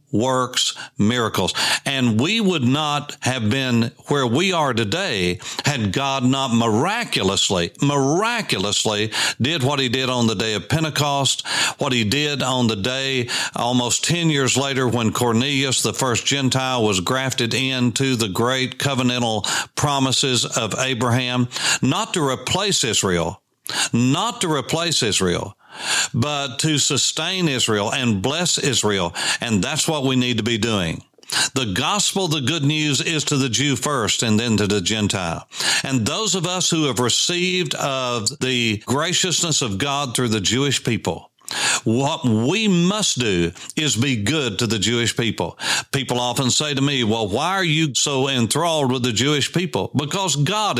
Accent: American